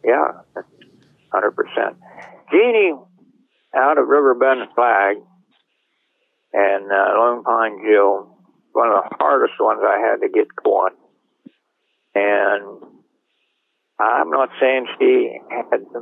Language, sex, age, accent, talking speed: English, male, 60-79, American, 105 wpm